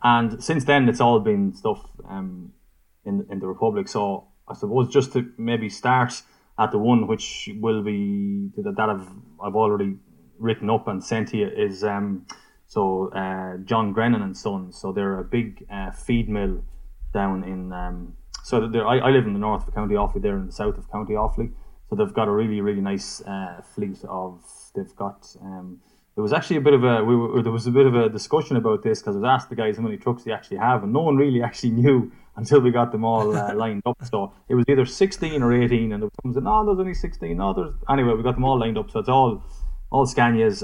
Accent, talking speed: Irish, 225 wpm